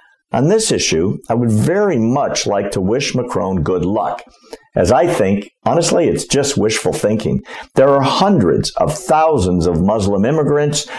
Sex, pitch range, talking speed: male, 100-165 Hz, 160 wpm